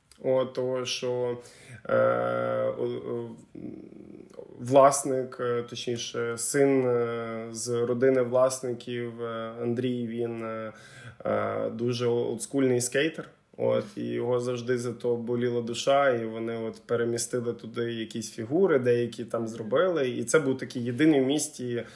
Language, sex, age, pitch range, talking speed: Ukrainian, male, 20-39, 120-135 Hz, 110 wpm